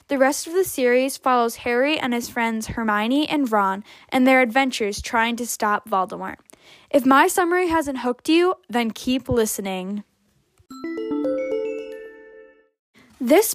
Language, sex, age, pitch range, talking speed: English, female, 10-29, 225-285 Hz, 135 wpm